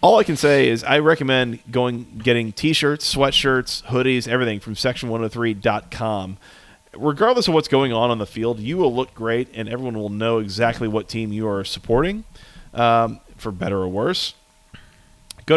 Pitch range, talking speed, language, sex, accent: 110-135 Hz, 170 wpm, English, male, American